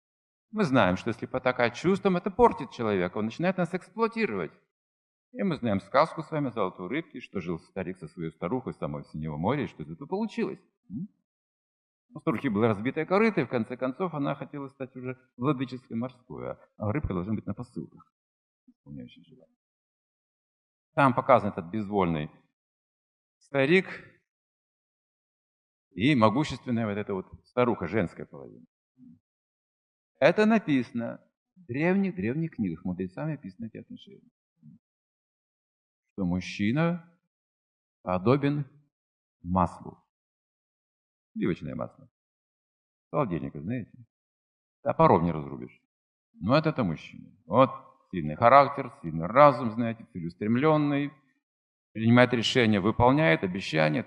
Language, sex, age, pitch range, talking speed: Russian, male, 50-69, 95-155 Hz, 115 wpm